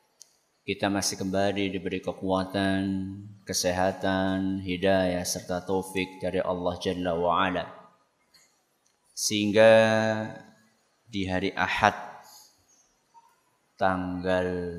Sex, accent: male, native